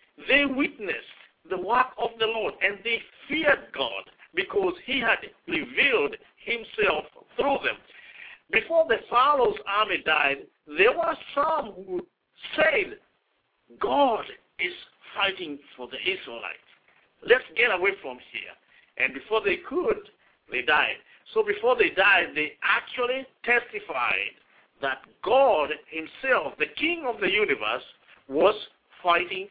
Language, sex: English, male